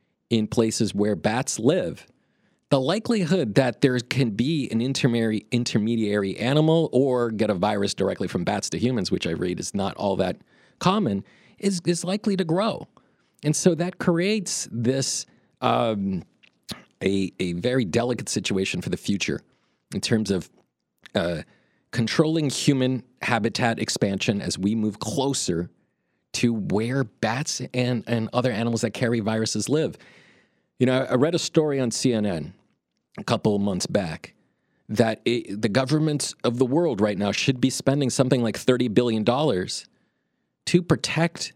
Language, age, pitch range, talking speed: English, 40-59, 110-155 Hz, 150 wpm